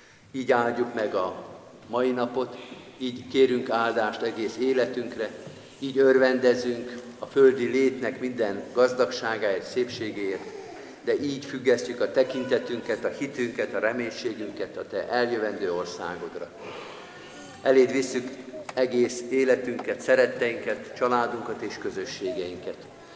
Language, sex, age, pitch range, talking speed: Hungarian, male, 50-69, 120-130 Hz, 105 wpm